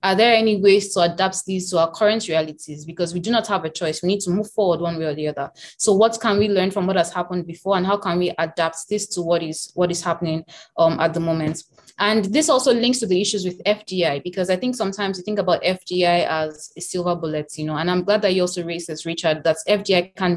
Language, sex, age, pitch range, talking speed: English, female, 20-39, 170-205 Hz, 260 wpm